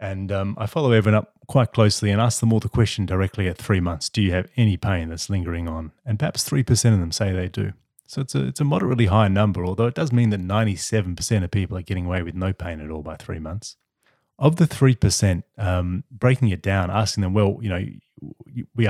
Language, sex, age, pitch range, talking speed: English, male, 30-49, 90-115 Hz, 250 wpm